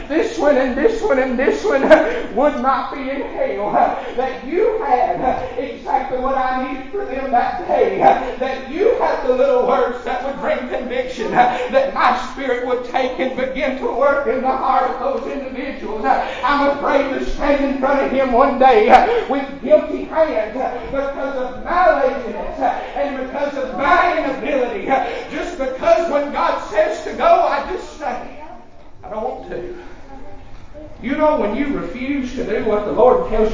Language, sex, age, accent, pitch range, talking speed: English, male, 40-59, American, 250-295 Hz, 170 wpm